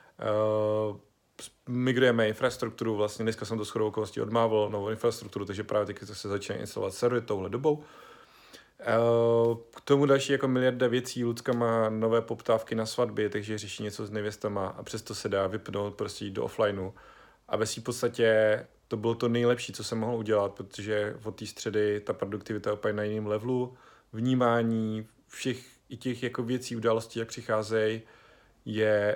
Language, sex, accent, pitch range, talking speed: Czech, male, native, 105-120 Hz, 165 wpm